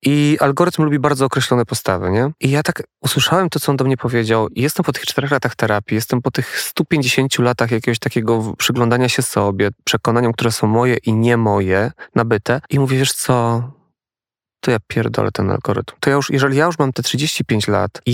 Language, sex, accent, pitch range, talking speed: Polish, male, native, 120-140 Hz, 200 wpm